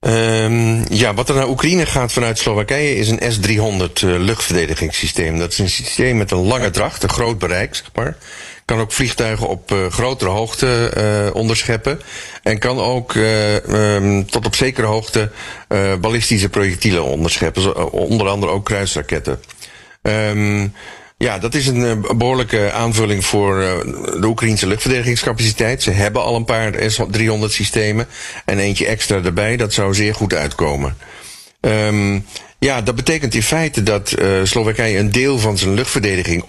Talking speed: 150 wpm